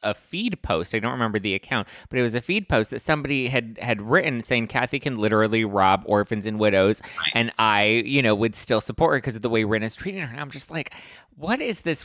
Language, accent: English, American